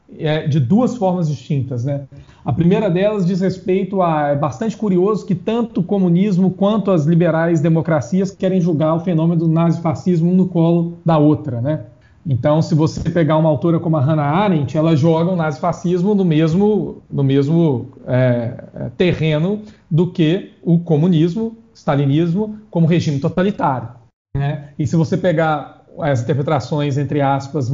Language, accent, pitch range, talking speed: Portuguese, Brazilian, 145-185 Hz, 160 wpm